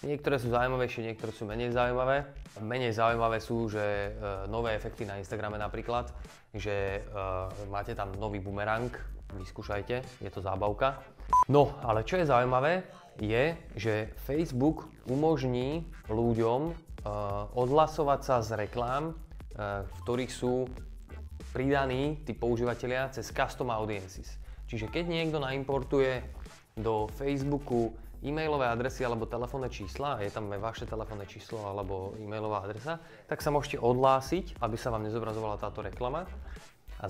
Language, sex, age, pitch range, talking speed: Slovak, male, 20-39, 105-135 Hz, 135 wpm